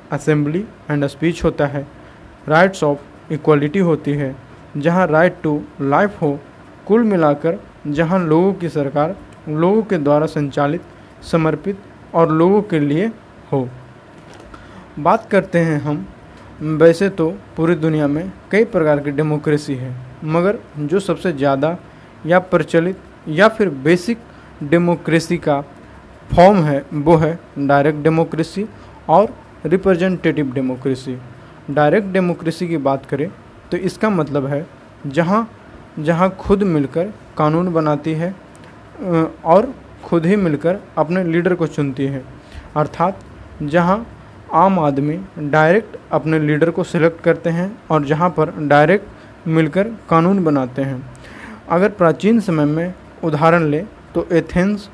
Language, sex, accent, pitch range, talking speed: Hindi, male, native, 150-180 Hz, 130 wpm